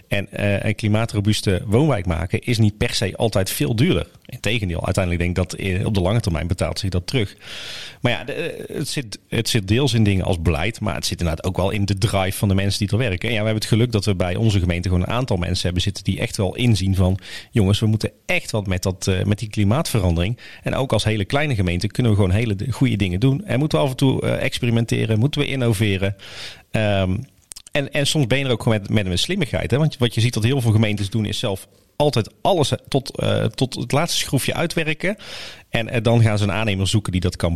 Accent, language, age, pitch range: Dutch, Dutch, 40-59, 95-125 Hz